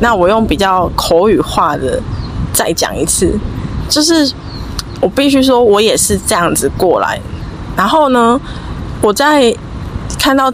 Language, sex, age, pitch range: Chinese, female, 20-39, 180-260 Hz